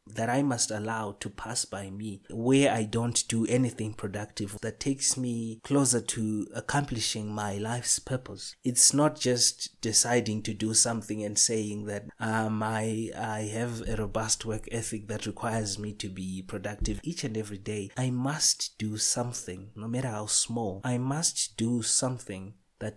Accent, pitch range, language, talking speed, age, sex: South African, 105-125 Hz, English, 165 wpm, 30-49, male